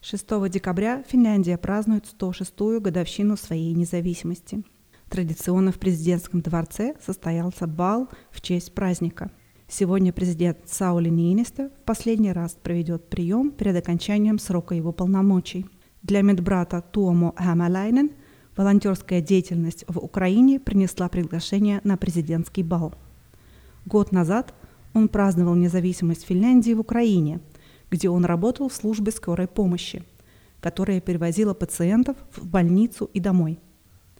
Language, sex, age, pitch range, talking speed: Russian, female, 30-49, 175-210 Hz, 120 wpm